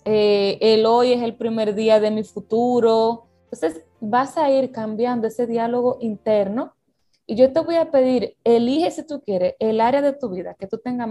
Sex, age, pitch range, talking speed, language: female, 20-39, 195-255 Hz, 195 wpm, Spanish